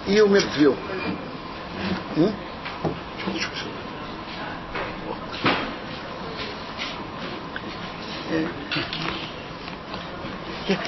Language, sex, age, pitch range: Russian, male, 60-79, 170-210 Hz